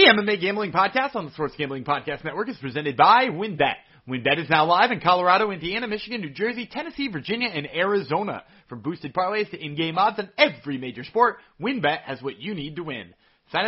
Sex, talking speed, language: male, 200 wpm, English